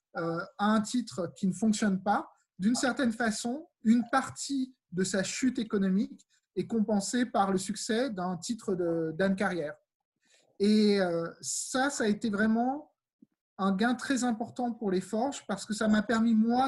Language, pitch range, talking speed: French, 200-245 Hz, 160 wpm